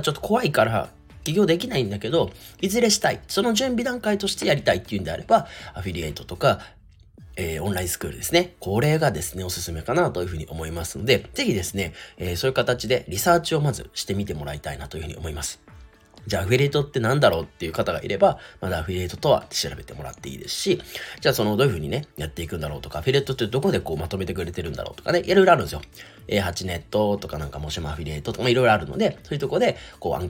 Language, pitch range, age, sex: Japanese, 80-130 Hz, 30-49, male